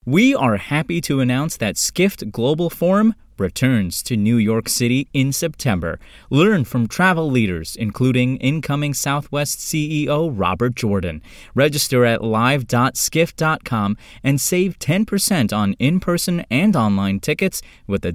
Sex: male